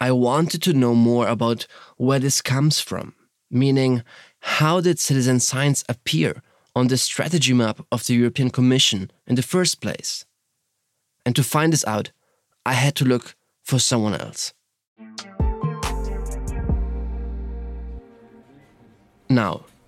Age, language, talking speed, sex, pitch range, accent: 20-39, English, 125 wpm, male, 115-140 Hz, German